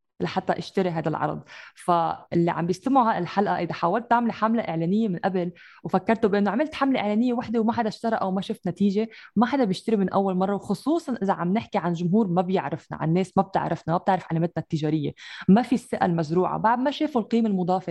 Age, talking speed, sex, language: 20-39, 200 wpm, female, English